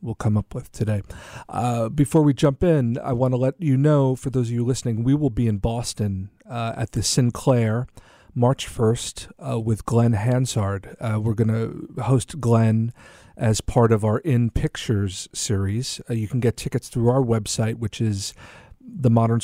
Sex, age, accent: male, 40-59, American